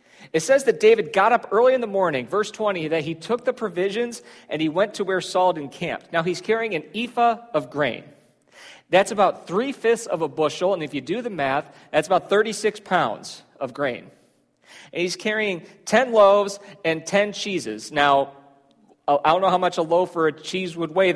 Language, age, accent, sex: English, 40-59, American, male